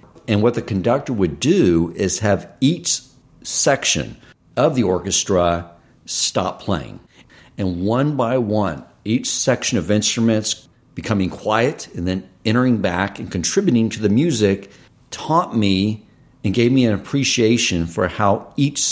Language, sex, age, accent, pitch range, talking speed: English, male, 50-69, American, 90-125 Hz, 140 wpm